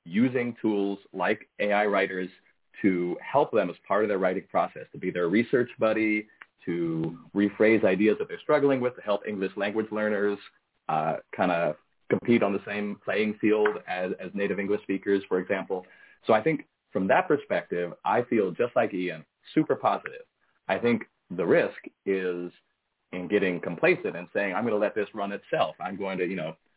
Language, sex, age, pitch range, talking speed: English, male, 30-49, 90-110 Hz, 180 wpm